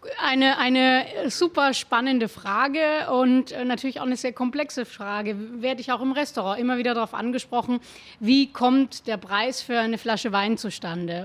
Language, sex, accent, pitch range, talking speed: German, female, German, 220-260 Hz, 160 wpm